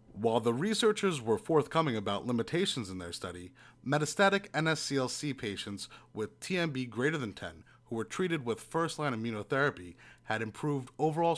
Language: English